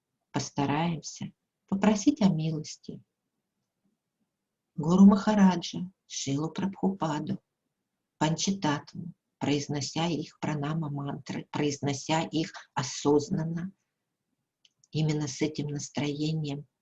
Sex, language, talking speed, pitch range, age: female, Russian, 70 wpm, 150-175 Hz, 50-69